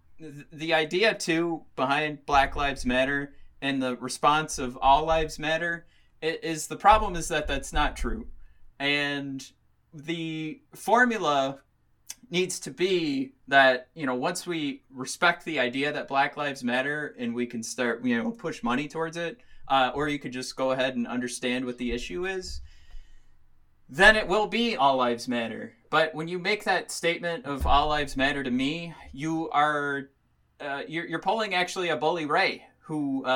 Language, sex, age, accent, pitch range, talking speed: English, male, 20-39, American, 125-165 Hz, 170 wpm